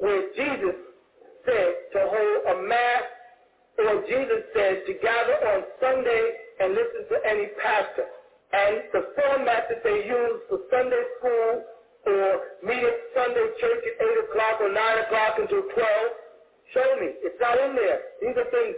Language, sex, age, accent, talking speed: English, male, 50-69, American, 160 wpm